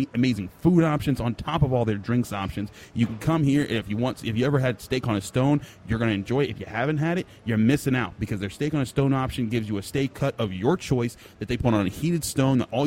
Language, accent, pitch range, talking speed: English, American, 115-145 Hz, 300 wpm